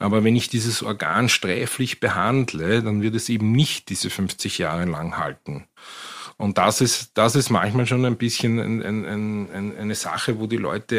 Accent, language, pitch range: Austrian, German, 100-120 Hz